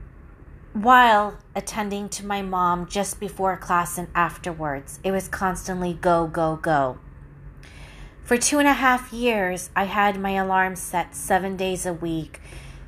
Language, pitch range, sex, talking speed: English, 170-200 Hz, female, 145 wpm